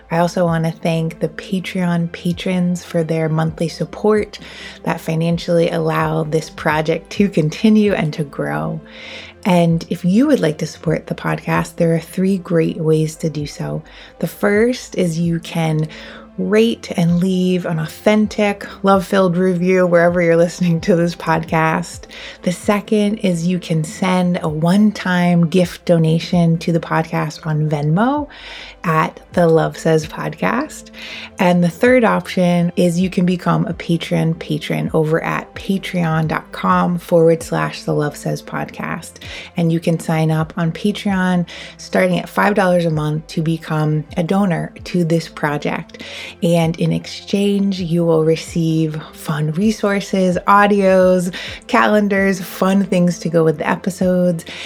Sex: female